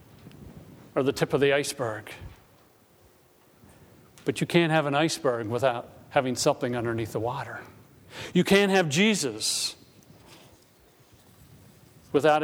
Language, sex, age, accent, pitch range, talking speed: English, male, 50-69, American, 120-170 Hz, 110 wpm